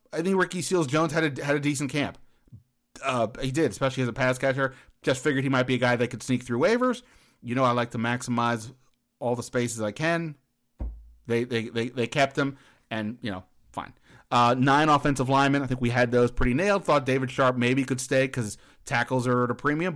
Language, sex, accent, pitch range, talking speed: English, male, American, 120-145 Hz, 225 wpm